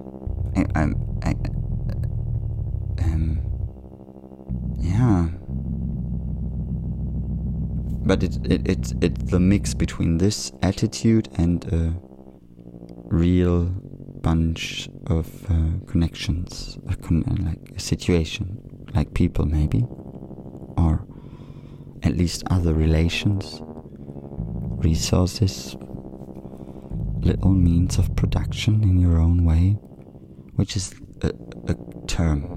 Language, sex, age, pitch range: German, male, 30-49, 70-95 Hz